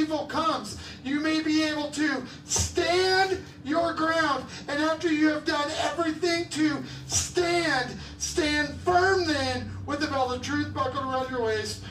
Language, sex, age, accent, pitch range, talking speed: English, male, 40-59, American, 270-335 Hz, 150 wpm